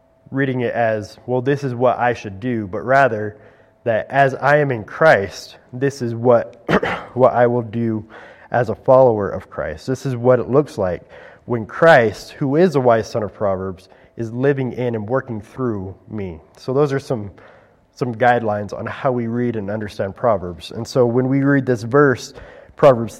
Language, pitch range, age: English, 105-130 Hz, 30-49